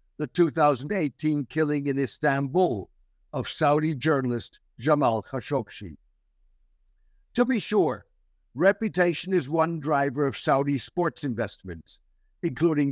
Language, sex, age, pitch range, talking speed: English, male, 60-79, 125-170 Hz, 100 wpm